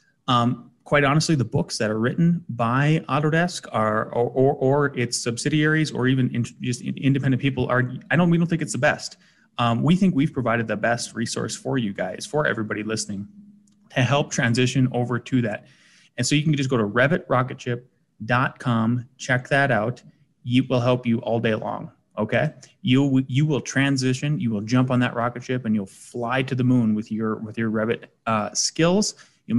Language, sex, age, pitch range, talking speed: English, male, 30-49, 115-140 Hz, 195 wpm